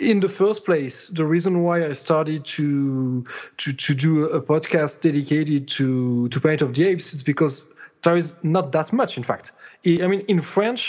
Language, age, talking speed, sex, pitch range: French, 30-49, 195 wpm, male, 145-185 Hz